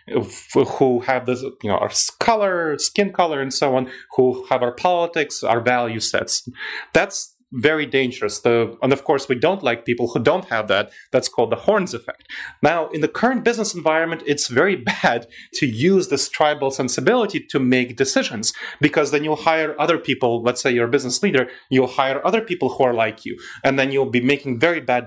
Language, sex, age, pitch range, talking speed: English, male, 30-49, 125-165 Hz, 200 wpm